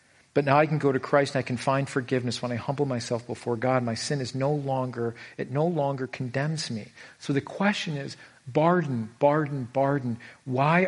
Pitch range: 125-150 Hz